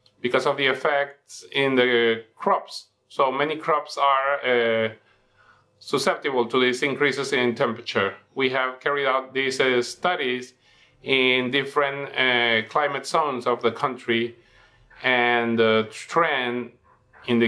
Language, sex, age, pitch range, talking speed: English, male, 40-59, 120-140 Hz, 130 wpm